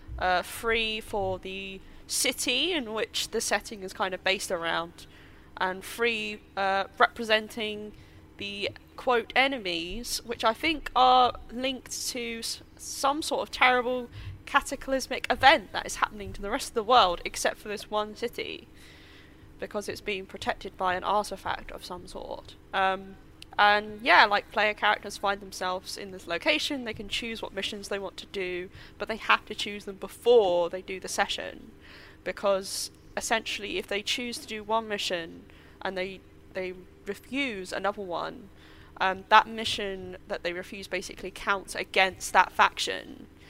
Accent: British